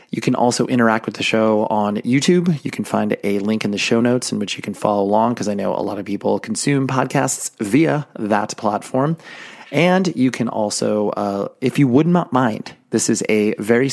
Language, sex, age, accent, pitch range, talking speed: English, male, 30-49, American, 105-130 Hz, 215 wpm